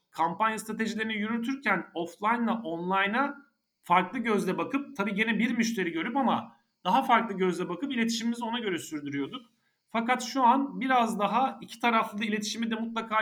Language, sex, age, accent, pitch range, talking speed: Turkish, male, 40-59, native, 170-215 Hz, 150 wpm